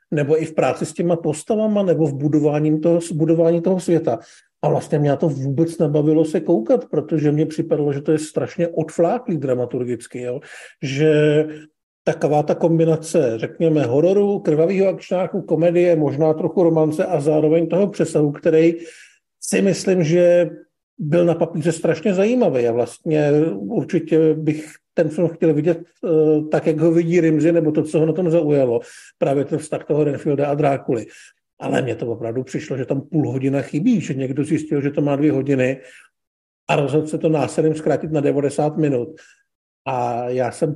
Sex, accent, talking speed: male, native, 170 wpm